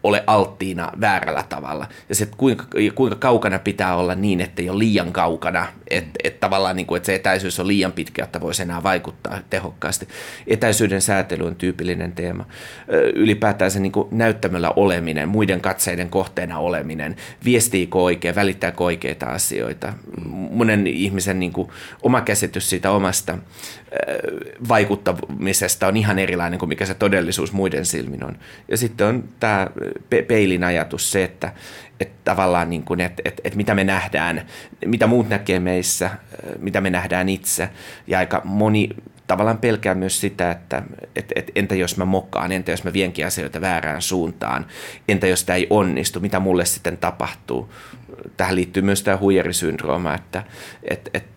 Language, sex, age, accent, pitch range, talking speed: Finnish, male, 30-49, native, 90-100 Hz, 155 wpm